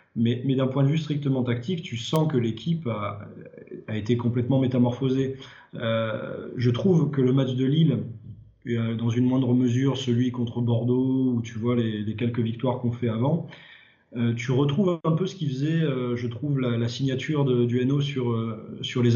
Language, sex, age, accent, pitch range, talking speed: French, male, 20-39, French, 120-140 Hz, 200 wpm